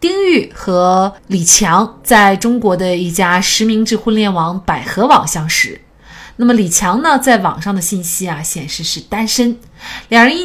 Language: Chinese